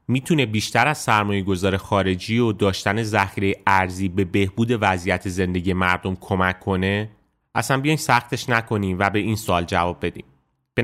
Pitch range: 100-125 Hz